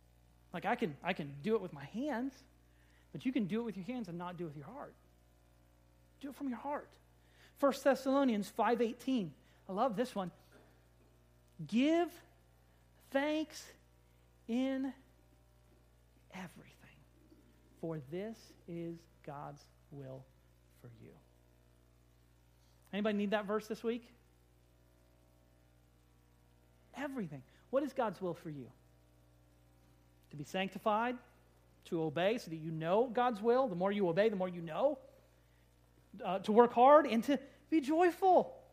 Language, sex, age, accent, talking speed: English, male, 40-59, American, 135 wpm